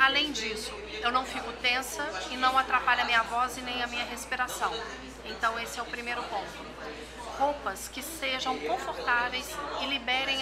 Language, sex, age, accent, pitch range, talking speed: Portuguese, female, 40-59, Brazilian, 245-285 Hz, 165 wpm